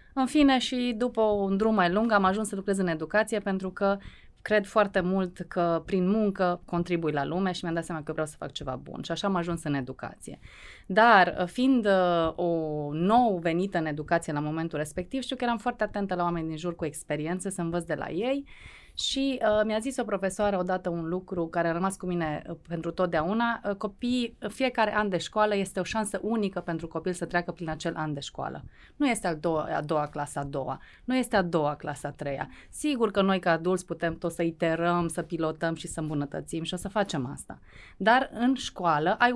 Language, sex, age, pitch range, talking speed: Romanian, female, 20-39, 165-215 Hz, 215 wpm